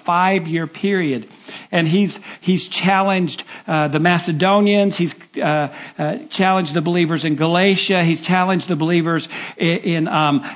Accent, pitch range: American, 165-205 Hz